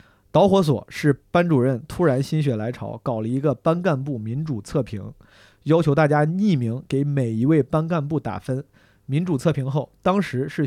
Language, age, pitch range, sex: Chinese, 30-49, 125-165 Hz, male